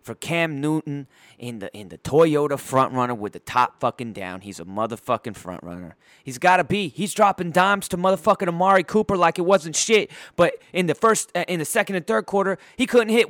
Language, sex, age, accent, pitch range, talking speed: English, male, 30-49, American, 130-205 Hz, 210 wpm